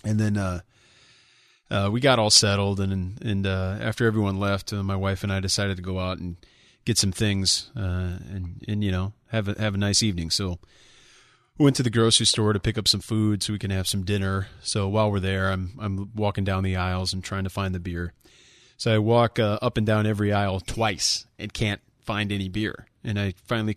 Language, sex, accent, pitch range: English, male, American, 95-110 Hz